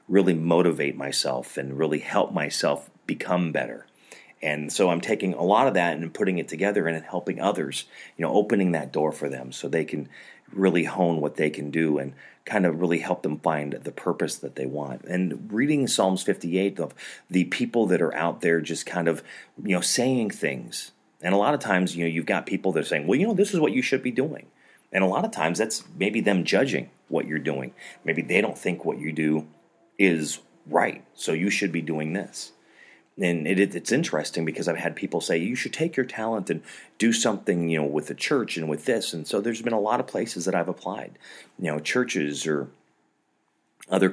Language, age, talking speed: English, 30-49, 220 wpm